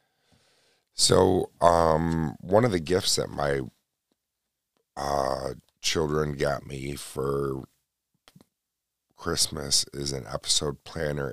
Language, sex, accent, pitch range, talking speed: English, male, American, 70-80 Hz, 95 wpm